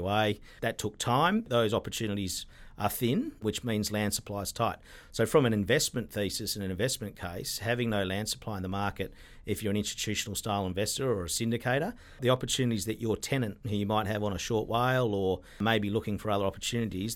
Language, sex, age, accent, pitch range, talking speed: English, male, 50-69, Australian, 100-115 Hz, 200 wpm